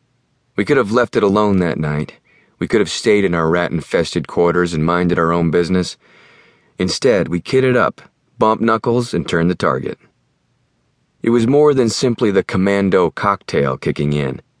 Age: 30-49